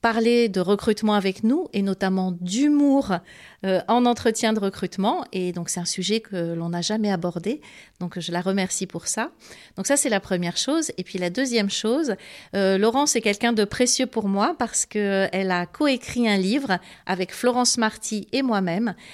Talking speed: 185 wpm